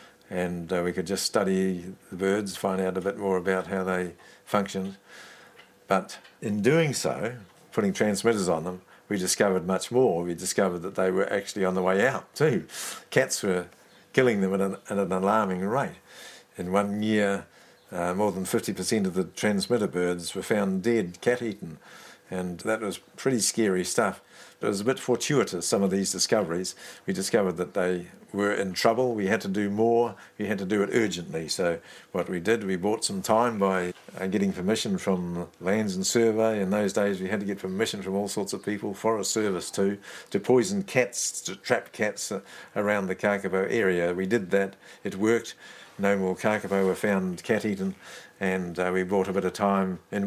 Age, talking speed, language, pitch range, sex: 60-79, 185 wpm, English, 95-105 Hz, male